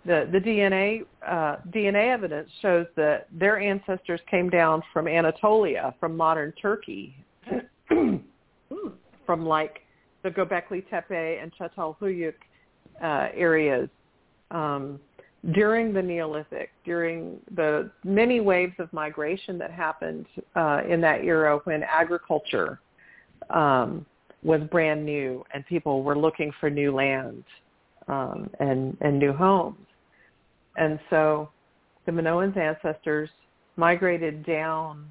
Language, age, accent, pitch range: English, 50-69, American, 150-180 Hz